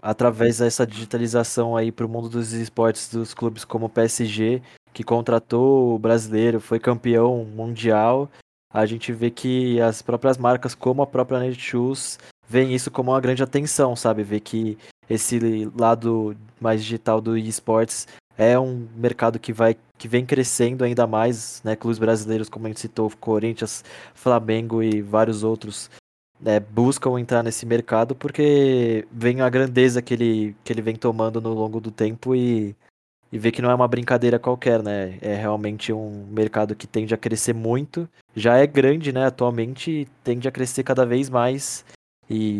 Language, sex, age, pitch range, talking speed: Portuguese, male, 20-39, 110-125 Hz, 170 wpm